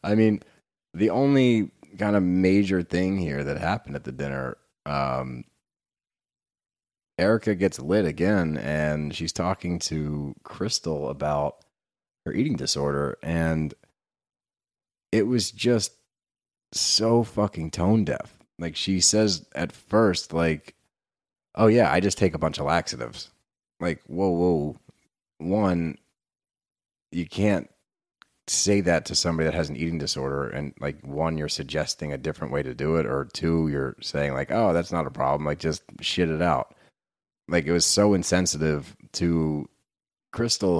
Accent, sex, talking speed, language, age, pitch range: American, male, 145 wpm, English, 30-49, 75-95 Hz